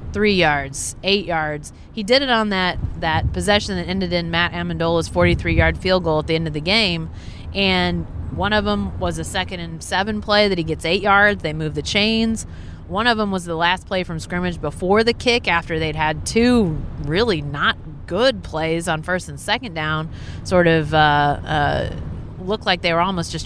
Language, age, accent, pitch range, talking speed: English, 30-49, American, 155-210 Hz, 205 wpm